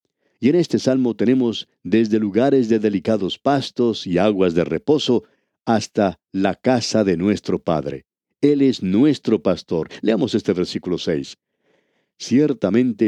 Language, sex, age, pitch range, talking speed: Spanish, male, 50-69, 95-130 Hz, 135 wpm